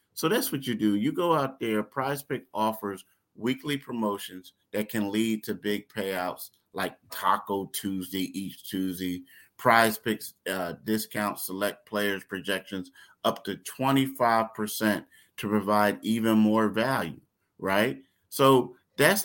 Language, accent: English, American